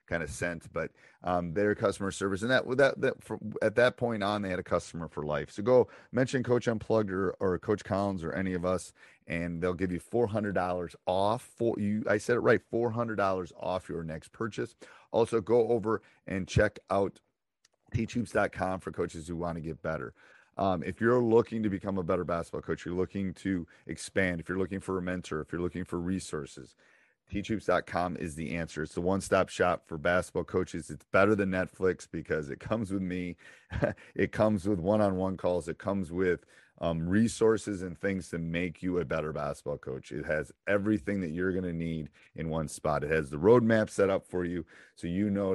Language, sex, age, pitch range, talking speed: English, male, 30-49, 85-105 Hz, 210 wpm